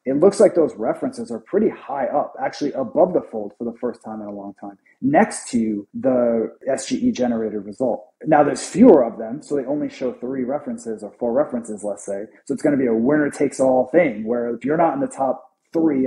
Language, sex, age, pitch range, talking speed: English, male, 30-49, 120-190 Hz, 230 wpm